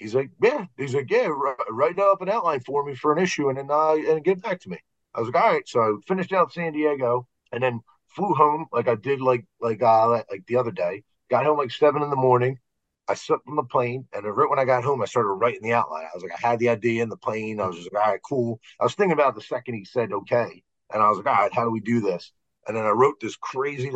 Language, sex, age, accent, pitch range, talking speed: English, male, 40-59, American, 115-145 Hz, 295 wpm